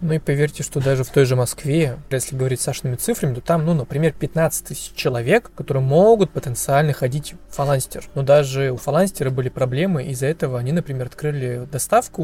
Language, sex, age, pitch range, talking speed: Russian, male, 20-39, 135-165 Hz, 190 wpm